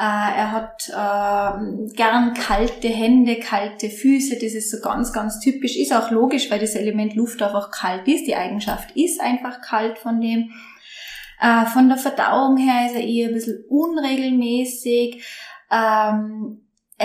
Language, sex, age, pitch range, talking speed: German, female, 20-39, 215-255 Hz, 150 wpm